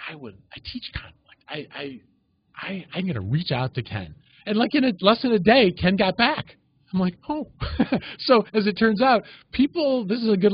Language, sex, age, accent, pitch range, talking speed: English, male, 40-59, American, 115-175 Hz, 215 wpm